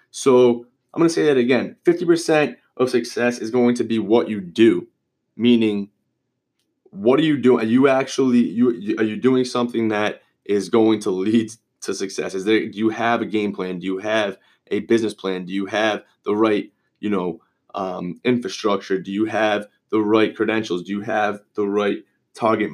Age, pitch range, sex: 20-39, 105-130 Hz, male